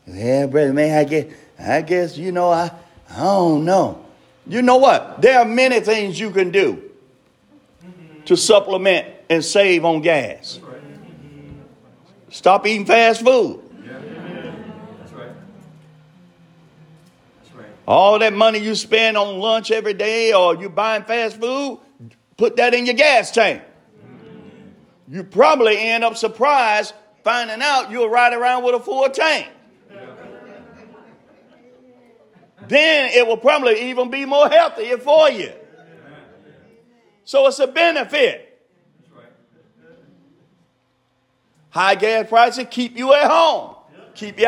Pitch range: 185-265 Hz